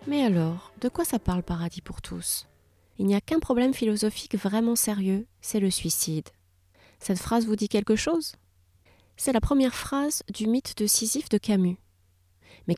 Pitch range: 175-240 Hz